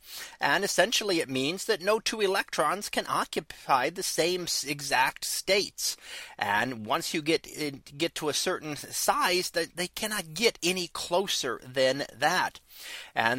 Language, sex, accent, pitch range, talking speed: English, male, American, 140-195 Hz, 150 wpm